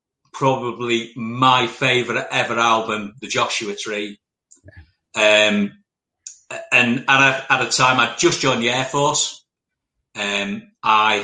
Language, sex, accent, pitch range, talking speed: English, male, British, 110-135 Hz, 125 wpm